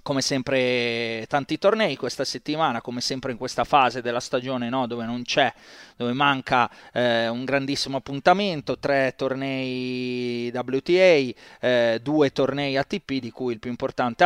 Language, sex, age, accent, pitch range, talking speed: Italian, male, 30-49, native, 125-145 Hz, 145 wpm